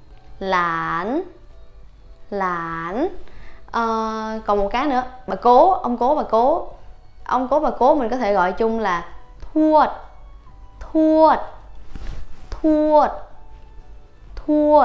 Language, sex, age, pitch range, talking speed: Vietnamese, female, 20-39, 210-290 Hz, 105 wpm